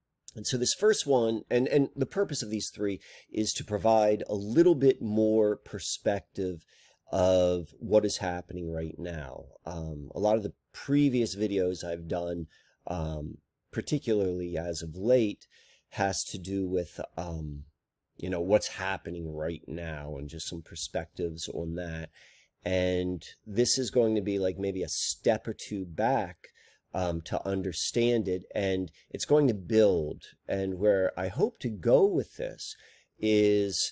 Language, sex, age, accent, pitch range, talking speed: English, male, 30-49, American, 85-110 Hz, 155 wpm